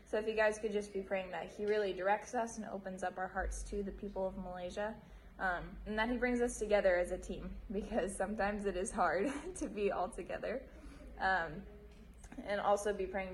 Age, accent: 10-29, American